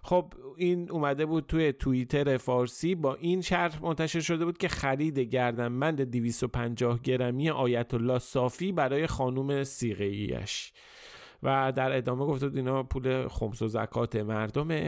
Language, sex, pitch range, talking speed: Persian, male, 120-165 Hz, 140 wpm